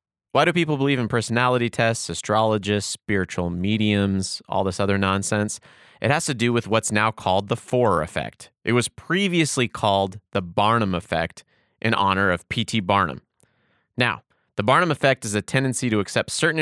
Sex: male